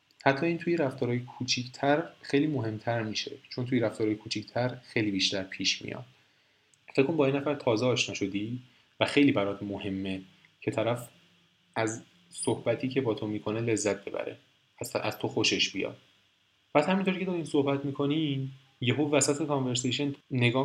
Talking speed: 150 wpm